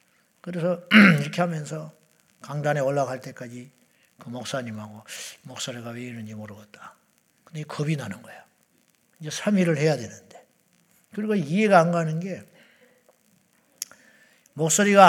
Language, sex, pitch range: Korean, male, 145-190 Hz